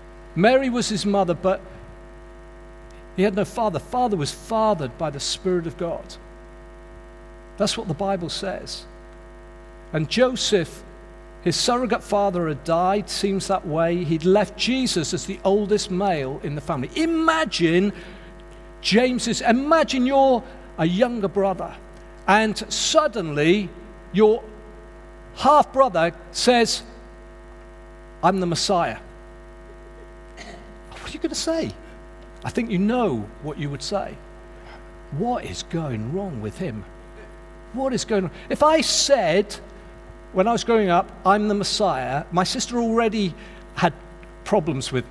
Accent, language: British, English